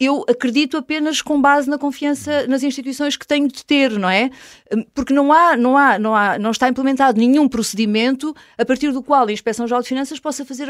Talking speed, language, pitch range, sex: 185 wpm, Portuguese, 220-285 Hz, female